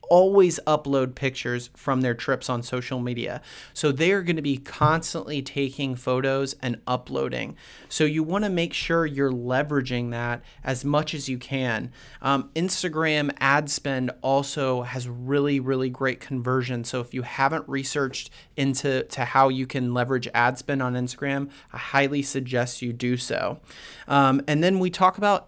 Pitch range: 130-150 Hz